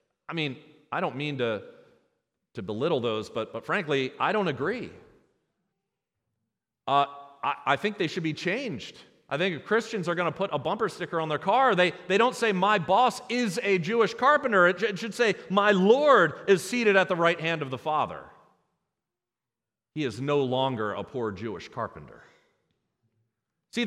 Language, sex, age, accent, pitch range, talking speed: English, male, 40-59, American, 160-225 Hz, 180 wpm